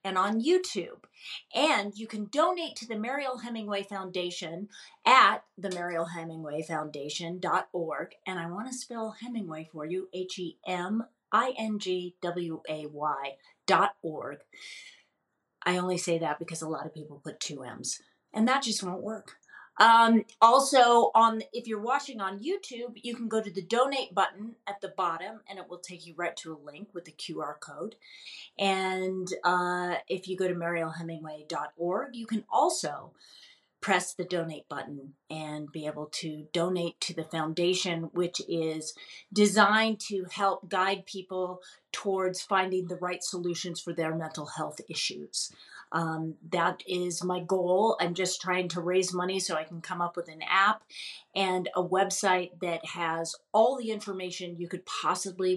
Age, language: 30-49, English